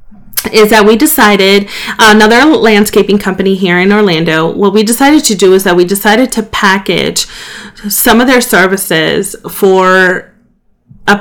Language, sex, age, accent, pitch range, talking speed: English, female, 30-49, American, 185-230 Hz, 150 wpm